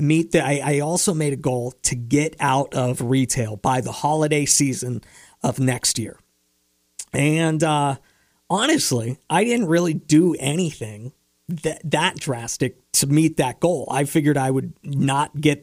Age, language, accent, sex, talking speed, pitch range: 40-59, English, American, male, 155 wpm, 130-170 Hz